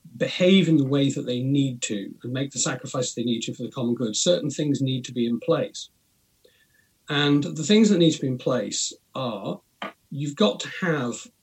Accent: British